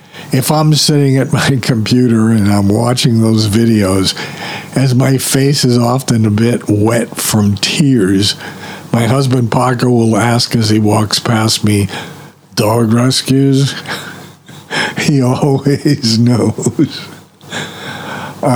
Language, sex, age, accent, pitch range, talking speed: English, male, 60-79, American, 105-135 Hz, 115 wpm